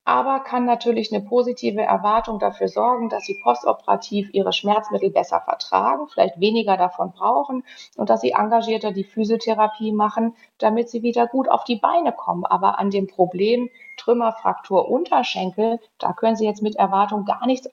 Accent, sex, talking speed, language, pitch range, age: German, female, 160 wpm, German, 195-230 Hz, 30-49